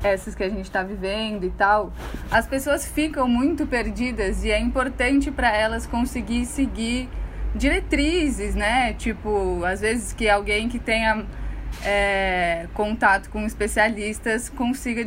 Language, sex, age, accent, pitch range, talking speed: Portuguese, female, 10-29, Brazilian, 205-265 Hz, 130 wpm